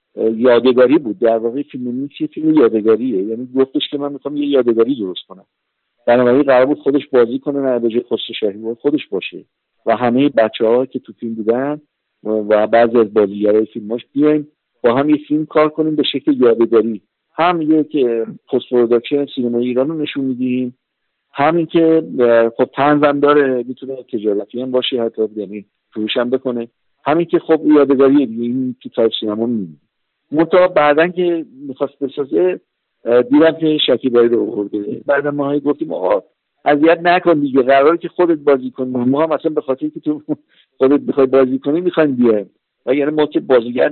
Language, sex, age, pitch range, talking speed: Persian, male, 50-69, 120-150 Hz, 155 wpm